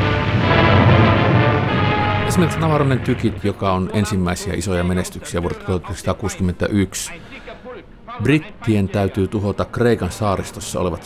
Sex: male